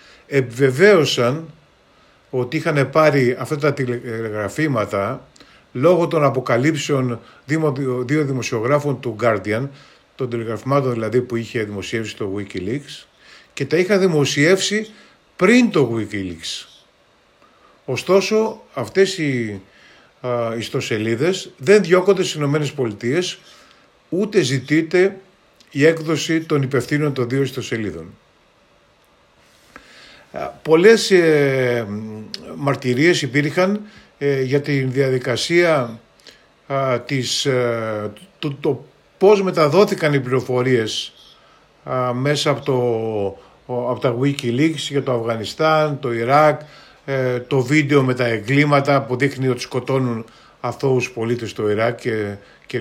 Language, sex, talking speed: Greek, male, 105 wpm